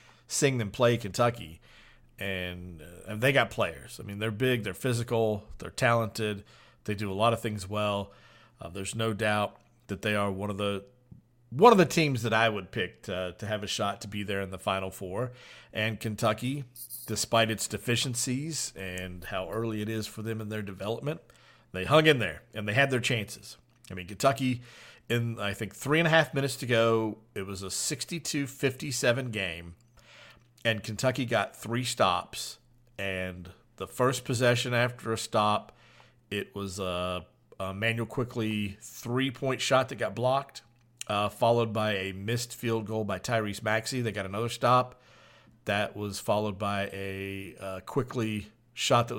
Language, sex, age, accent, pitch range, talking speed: English, male, 40-59, American, 100-120 Hz, 175 wpm